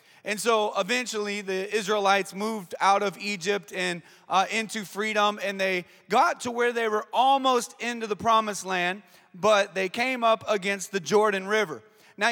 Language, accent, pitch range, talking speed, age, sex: English, American, 185-220 Hz, 165 wpm, 30-49, male